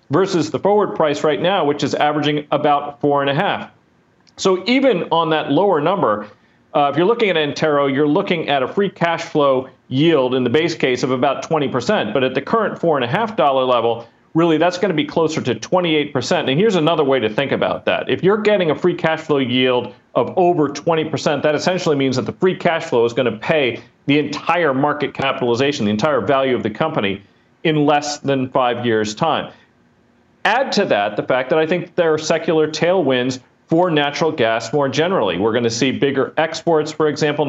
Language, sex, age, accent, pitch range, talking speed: English, male, 40-59, American, 125-155 Hz, 205 wpm